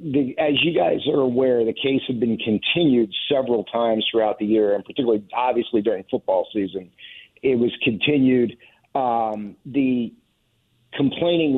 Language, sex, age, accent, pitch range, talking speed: English, male, 50-69, American, 110-135 Hz, 145 wpm